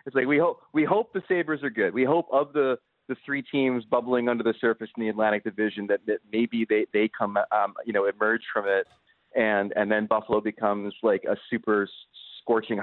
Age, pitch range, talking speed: 30-49, 100-120 Hz, 215 wpm